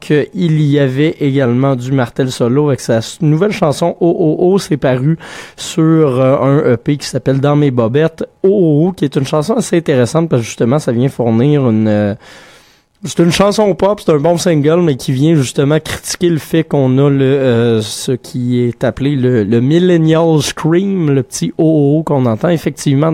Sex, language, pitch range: male, French, 120-155 Hz